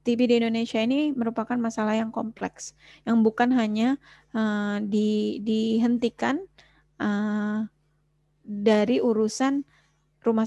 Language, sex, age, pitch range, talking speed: Indonesian, female, 20-39, 210-245 Hz, 105 wpm